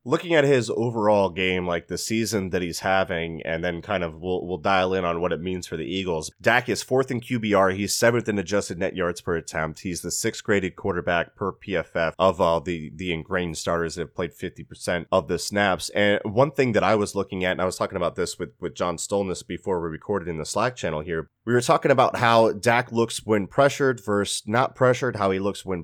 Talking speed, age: 235 wpm, 30-49